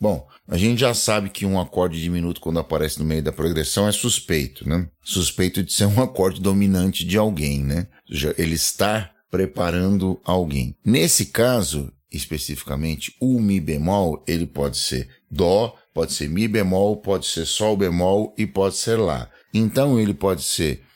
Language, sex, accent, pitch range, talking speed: Portuguese, male, Brazilian, 90-125 Hz, 170 wpm